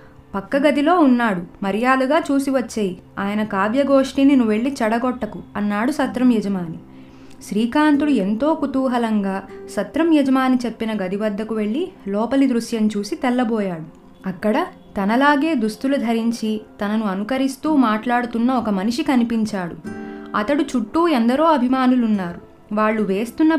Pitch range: 205-265 Hz